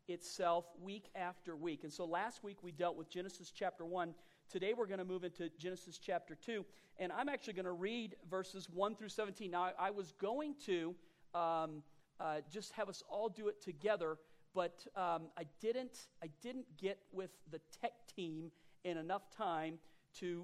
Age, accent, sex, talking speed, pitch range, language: 40-59, American, male, 185 wpm, 165-205 Hz, English